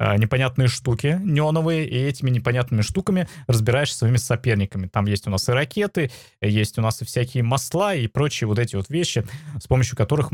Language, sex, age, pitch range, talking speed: Russian, male, 20-39, 110-145 Hz, 185 wpm